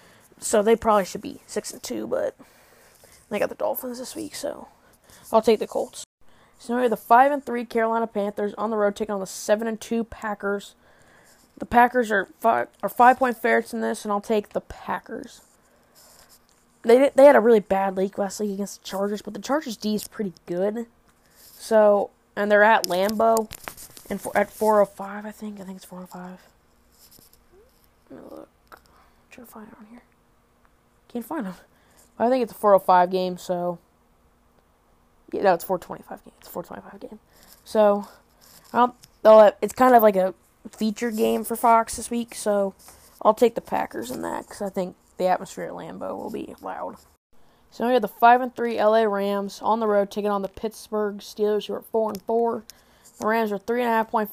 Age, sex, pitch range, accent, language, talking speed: 20-39, female, 200-230 Hz, American, English, 200 wpm